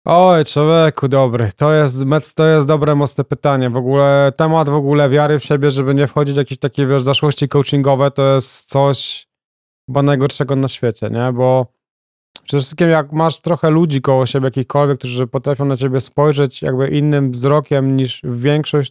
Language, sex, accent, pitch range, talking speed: Polish, male, native, 135-160 Hz, 175 wpm